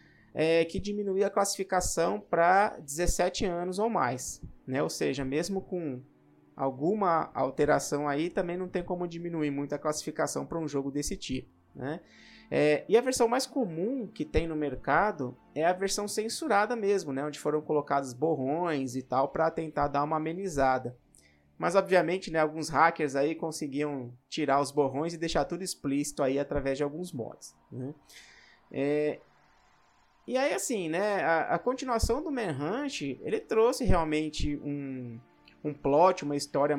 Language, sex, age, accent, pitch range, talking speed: Portuguese, male, 20-39, Brazilian, 140-175 Hz, 155 wpm